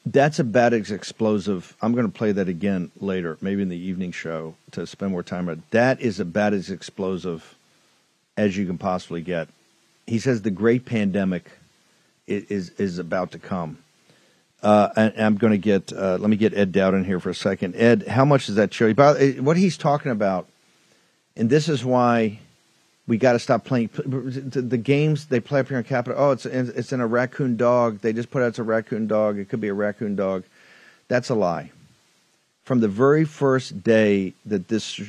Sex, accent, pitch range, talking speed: male, American, 95-125 Hz, 210 wpm